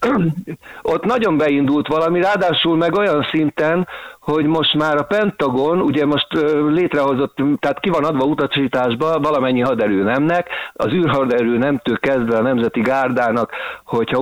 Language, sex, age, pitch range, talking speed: Hungarian, male, 50-69, 115-155 Hz, 135 wpm